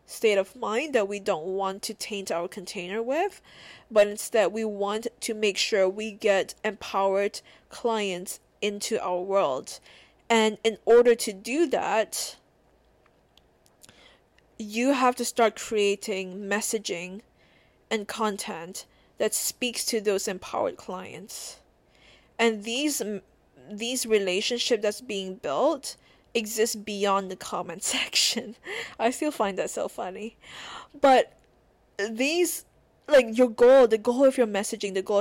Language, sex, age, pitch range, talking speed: English, female, 20-39, 200-235 Hz, 130 wpm